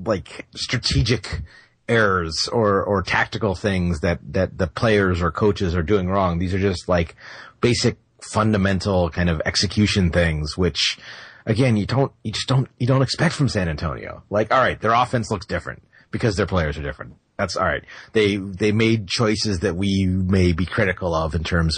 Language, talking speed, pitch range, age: English, 180 wpm, 90-115 Hz, 30-49